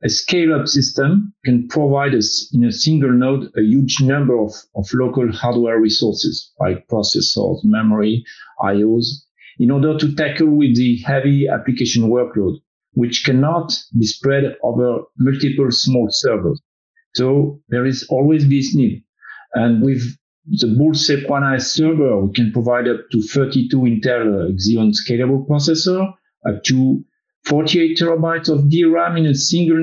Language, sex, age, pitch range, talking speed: English, male, 50-69, 120-150 Hz, 140 wpm